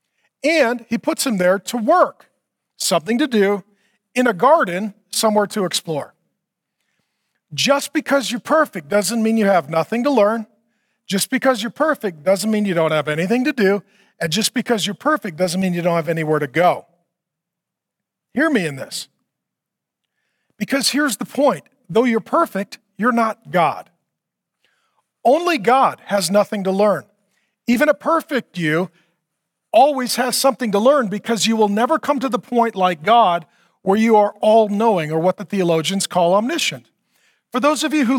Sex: male